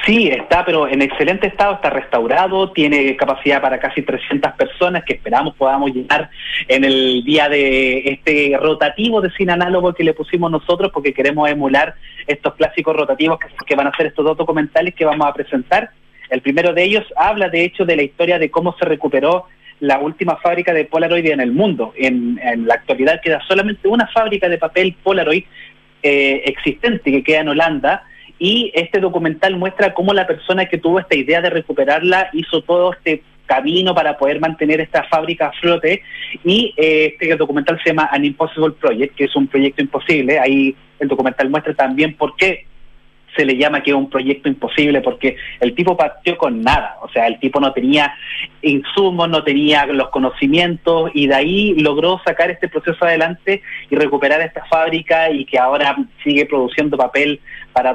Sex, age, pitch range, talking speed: male, 30-49, 140-175 Hz, 185 wpm